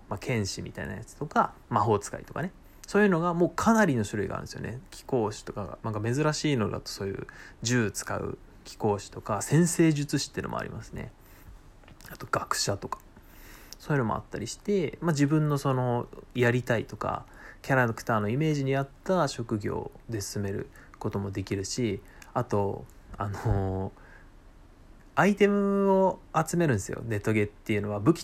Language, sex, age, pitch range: Japanese, male, 20-39, 105-160 Hz